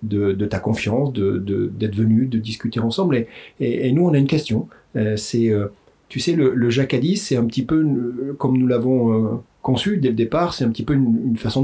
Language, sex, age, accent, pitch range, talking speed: French, male, 40-59, French, 110-135 Hz, 235 wpm